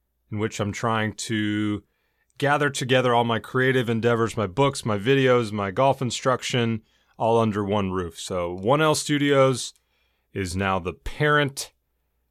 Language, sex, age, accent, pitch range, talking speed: English, male, 30-49, American, 100-130 Hz, 140 wpm